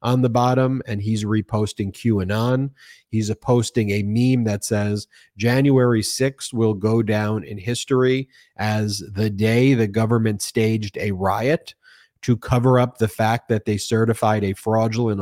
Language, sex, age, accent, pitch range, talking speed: English, male, 30-49, American, 105-125 Hz, 155 wpm